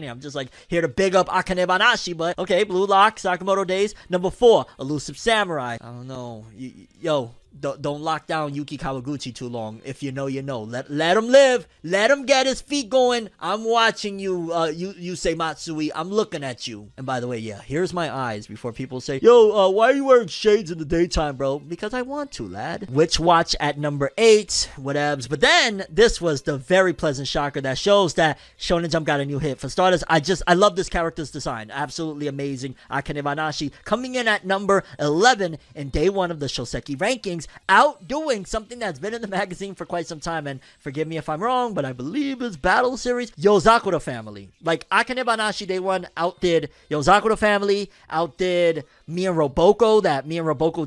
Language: English